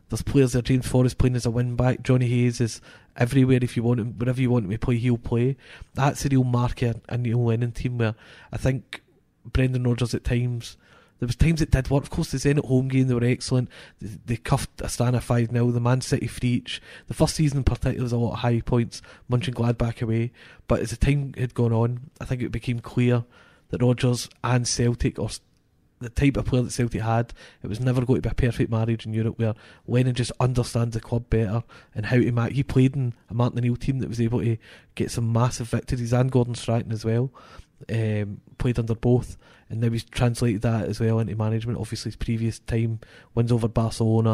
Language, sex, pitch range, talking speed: English, male, 115-125 Hz, 230 wpm